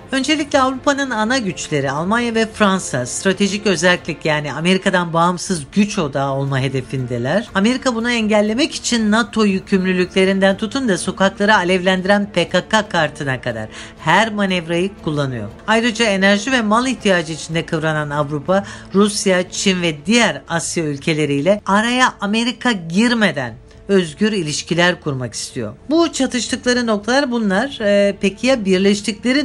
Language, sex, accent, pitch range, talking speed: Turkish, female, native, 165-215 Hz, 125 wpm